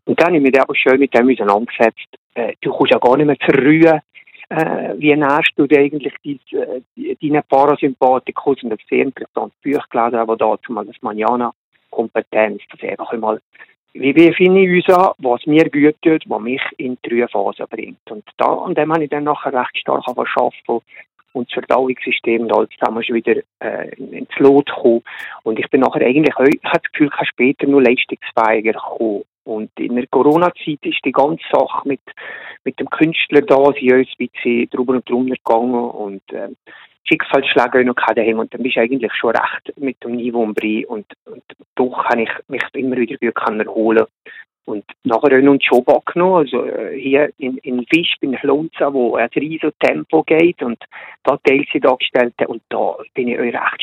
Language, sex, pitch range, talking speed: German, male, 120-150 Hz, 195 wpm